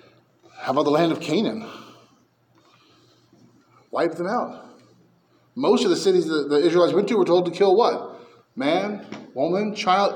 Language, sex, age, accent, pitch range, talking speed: English, male, 30-49, American, 145-235 Hz, 155 wpm